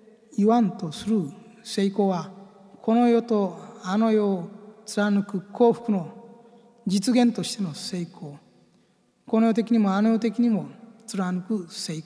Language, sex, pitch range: Japanese, male, 185-235 Hz